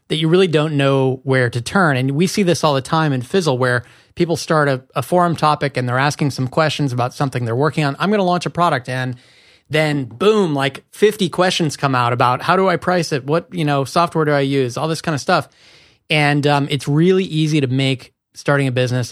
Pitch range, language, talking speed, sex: 125-150 Hz, English, 240 wpm, male